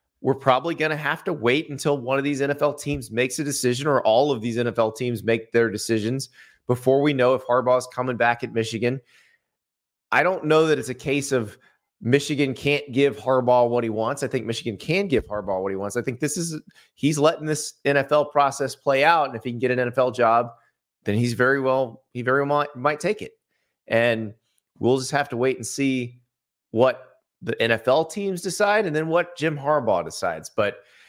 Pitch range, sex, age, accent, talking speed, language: 115-145 Hz, male, 30-49, American, 210 wpm, English